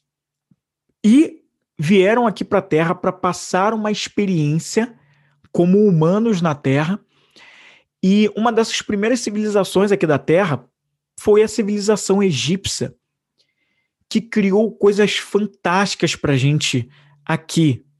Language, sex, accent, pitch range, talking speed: Portuguese, male, Brazilian, 150-215 Hz, 115 wpm